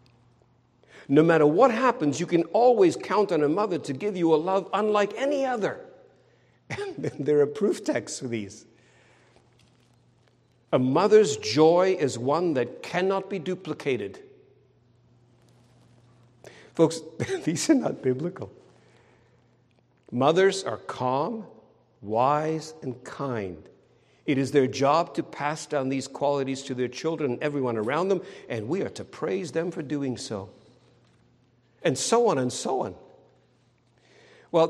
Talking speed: 135 wpm